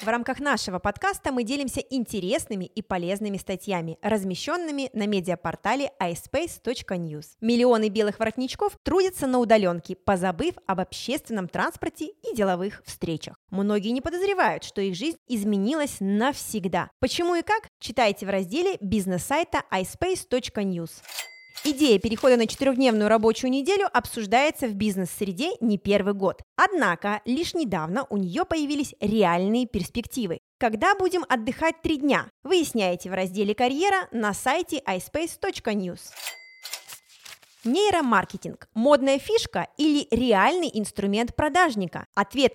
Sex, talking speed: female, 115 wpm